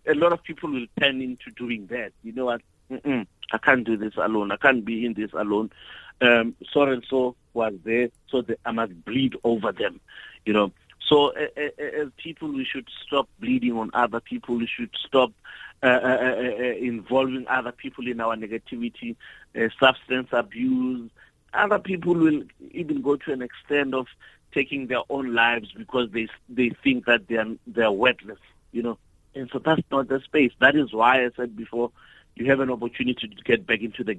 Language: English